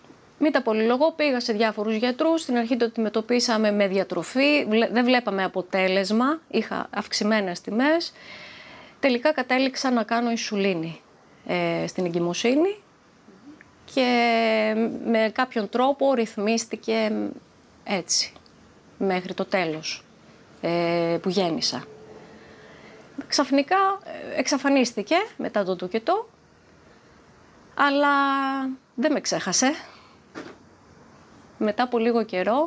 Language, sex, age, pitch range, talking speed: Greek, female, 30-49, 200-265 Hz, 95 wpm